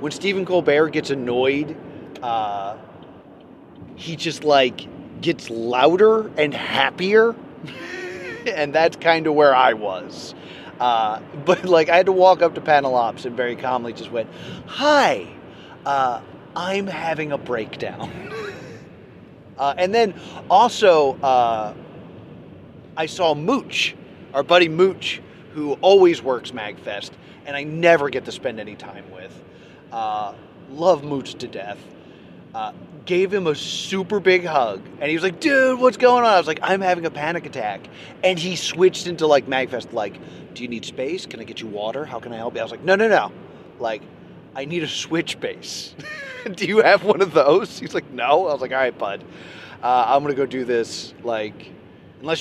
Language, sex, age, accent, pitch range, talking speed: English, male, 30-49, American, 135-185 Hz, 170 wpm